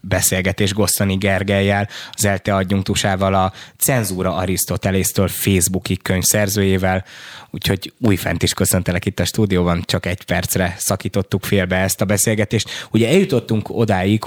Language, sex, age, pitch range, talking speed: Hungarian, male, 20-39, 90-100 Hz, 125 wpm